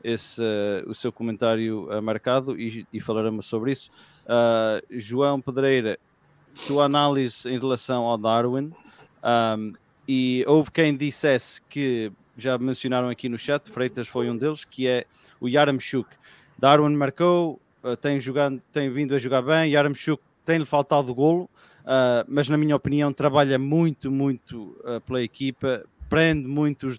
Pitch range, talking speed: 125-150 Hz, 150 wpm